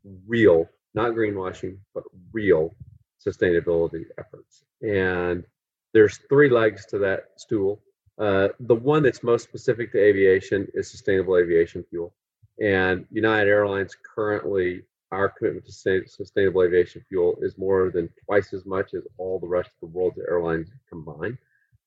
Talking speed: 140 wpm